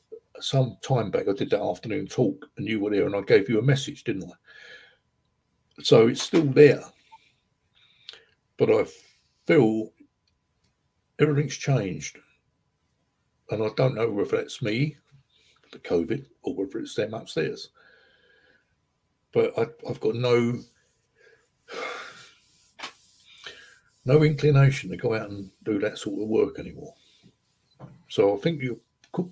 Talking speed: 135 wpm